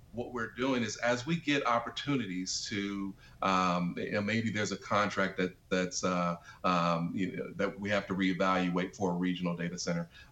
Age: 40-59